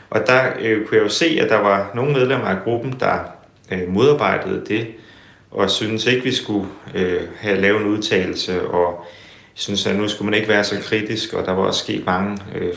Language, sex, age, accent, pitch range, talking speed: Danish, male, 30-49, native, 100-115 Hz, 210 wpm